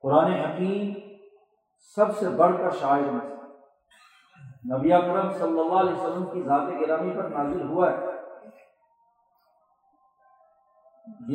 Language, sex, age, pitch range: Urdu, male, 50-69, 160-210 Hz